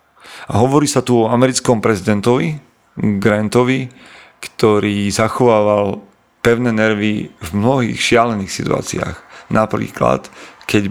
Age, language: 40-59, Slovak